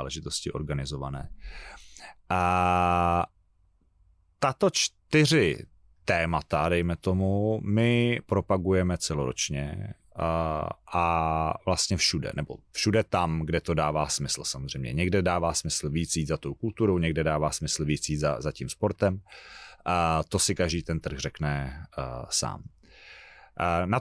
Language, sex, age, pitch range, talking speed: Czech, male, 30-49, 80-100 Hz, 125 wpm